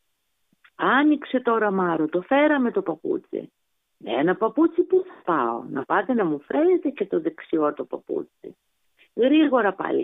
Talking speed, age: 150 wpm, 50-69